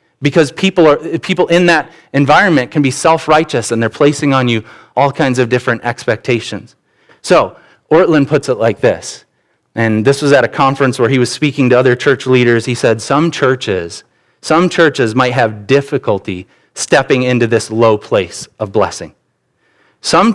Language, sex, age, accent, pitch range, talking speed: English, male, 30-49, American, 115-155 Hz, 170 wpm